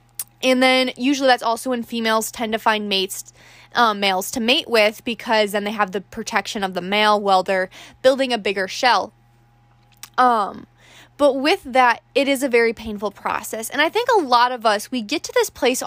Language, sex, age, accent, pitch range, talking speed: English, female, 10-29, American, 215-280 Hz, 200 wpm